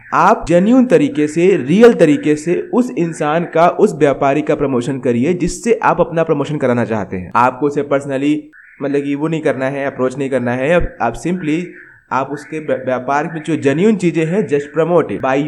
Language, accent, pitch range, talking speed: Hindi, native, 140-180 Hz, 190 wpm